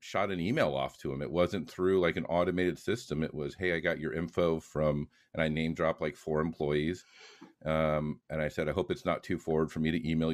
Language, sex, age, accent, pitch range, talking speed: English, male, 40-59, American, 75-85 Hz, 245 wpm